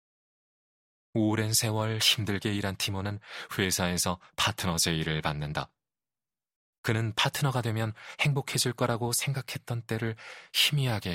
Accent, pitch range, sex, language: native, 90-115 Hz, male, Korean